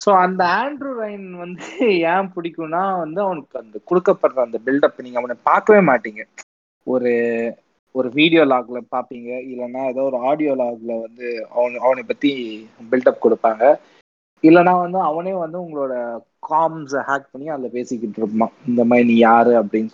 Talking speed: 145 wpm